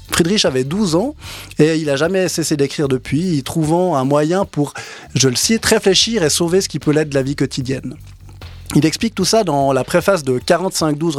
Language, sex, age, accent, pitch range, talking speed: French, male, 20-39, French, 135-180 Hz, 210 wpm